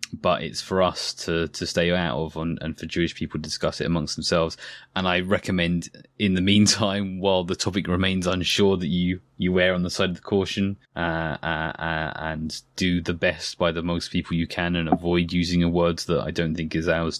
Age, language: 20-39, English